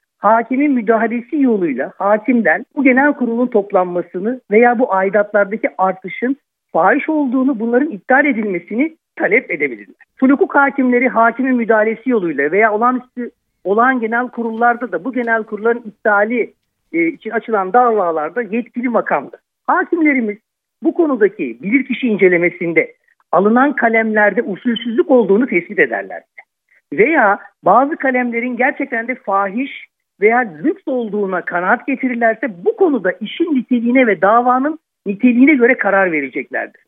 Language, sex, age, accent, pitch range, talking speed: Turkish, male, 60-79, native, 215-280 Hz, 115 wpm